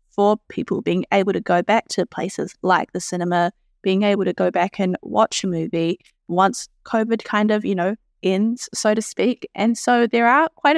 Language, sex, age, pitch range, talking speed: English, female, 20-39, 195-245 Hz, 200 wpm